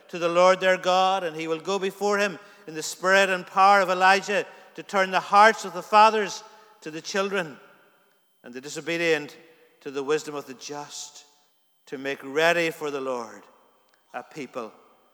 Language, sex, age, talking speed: English, male, 50-69, 180 wpm